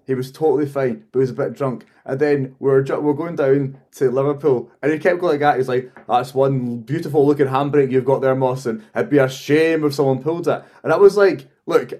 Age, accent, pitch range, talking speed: 20-39, British, 120-145 Hz, 250 wpm